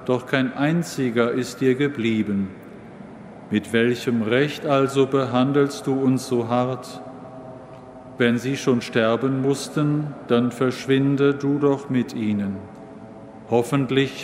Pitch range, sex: 120-140 Hz, male